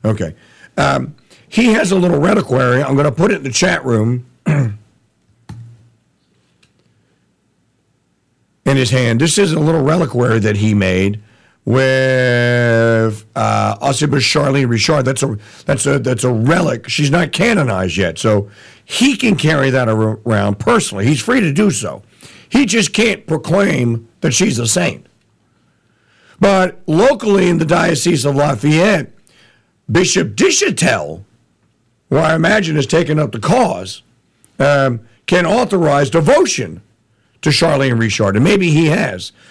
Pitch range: 115-180 Hz